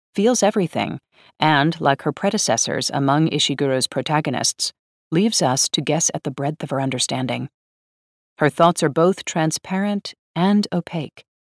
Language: English